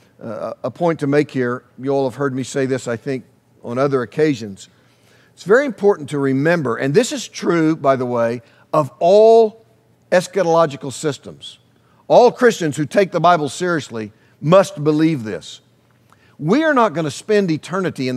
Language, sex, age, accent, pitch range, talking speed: English, male, 50-69, American, 130-180 Hz, 170 wpm